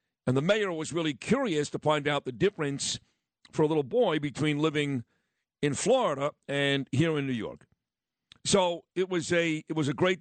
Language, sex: English, male